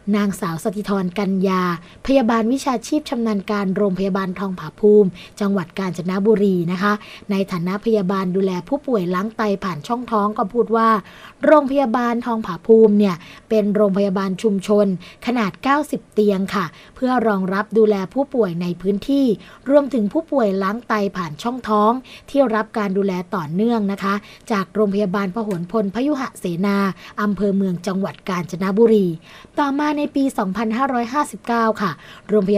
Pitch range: 195-235 Hz